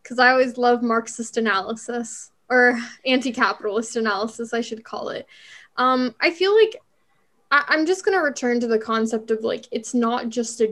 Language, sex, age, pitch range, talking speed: English, female, 10-29, 225-260 Hz, 175 wpm